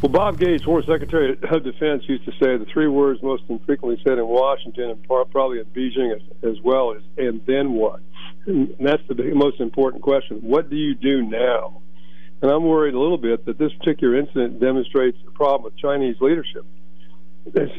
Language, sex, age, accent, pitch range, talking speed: English, male, 50-69, American, 120-140 Hz, 200 wpm